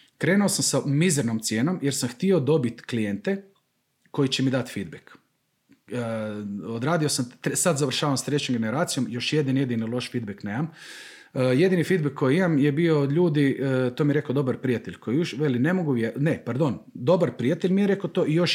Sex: male